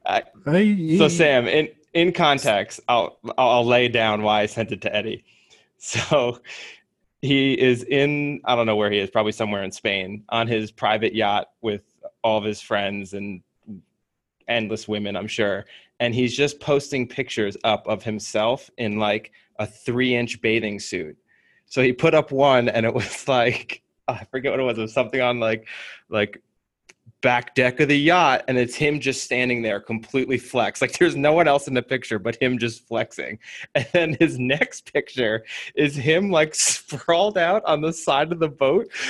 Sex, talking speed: male, 185 wpm